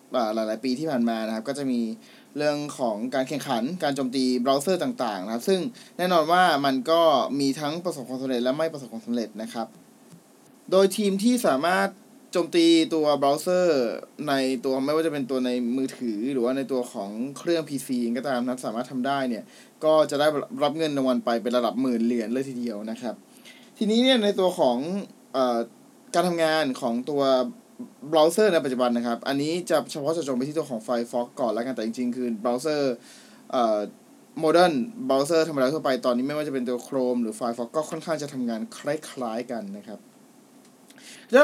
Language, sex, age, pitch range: Thai, male, 20-39, 125-165 Hz